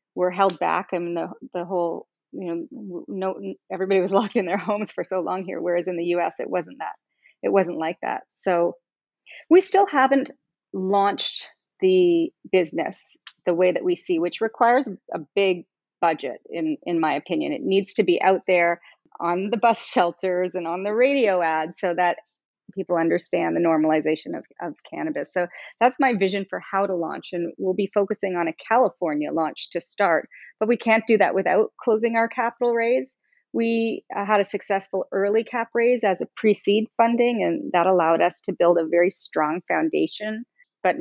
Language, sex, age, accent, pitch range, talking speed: Hebrew, female, 30-49, American, 180-235 Hz, 185 wpm